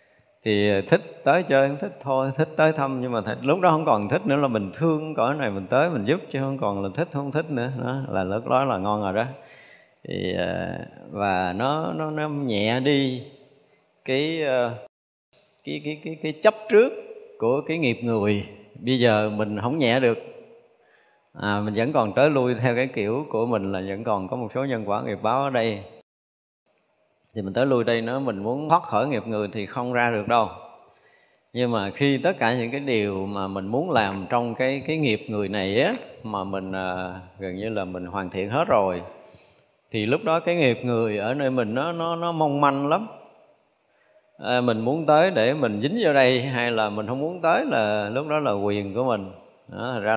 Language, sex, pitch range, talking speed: Vietnamese, male, 105-140 Hz, 210 wpm